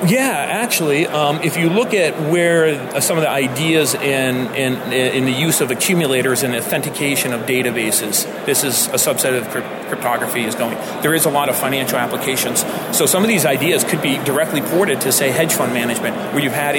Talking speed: 195 wpm